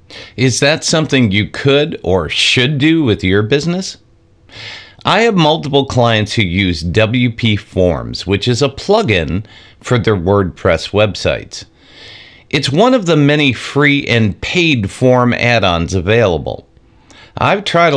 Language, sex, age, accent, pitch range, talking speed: English, male, 50-69, American, 100-140 Hz, 135 wpm